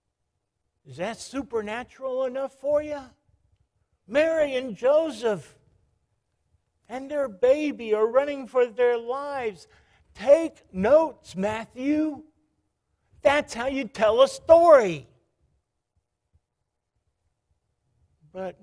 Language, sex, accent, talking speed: English, male, American, 85 wpm